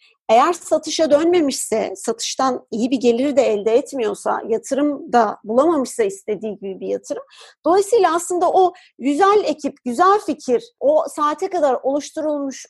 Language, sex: Turkish, female